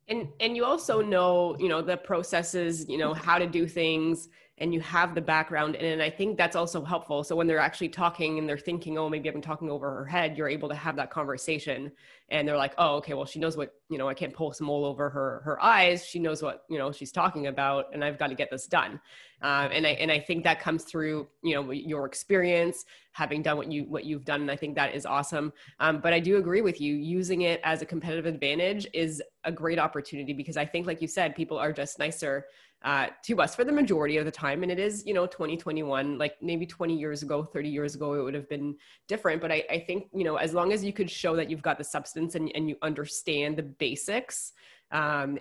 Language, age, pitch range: English, 20-39, 150-170 Hz